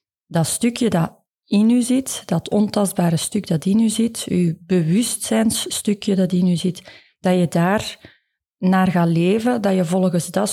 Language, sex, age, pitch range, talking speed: Dutch, female, 30-49, 175-205 Hz, 165 wpm